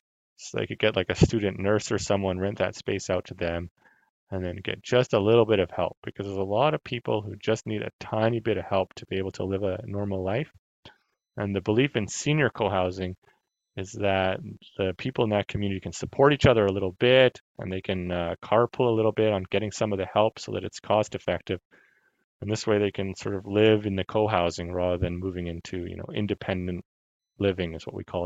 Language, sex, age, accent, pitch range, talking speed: English, male, 30-49, American, 95-115 Hz, 230 wpm